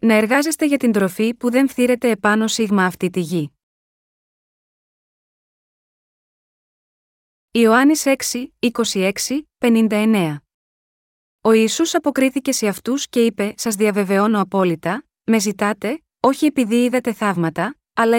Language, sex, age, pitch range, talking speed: Greek, female, 20-39, 205-255 Hz, 110 wpm